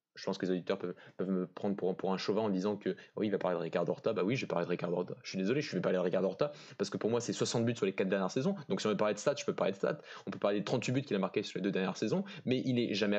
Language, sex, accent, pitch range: French, male, French, 105-155 Hz